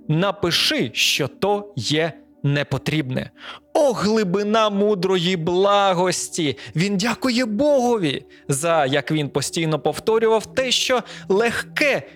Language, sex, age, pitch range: Ukrainian, male, 30-49, 145-235 Hz